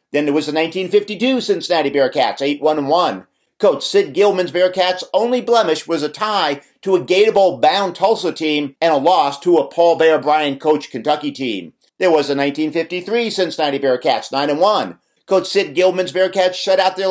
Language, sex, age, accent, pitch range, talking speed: English, male, 50-69, American, 145-200 Hz, 165 wpm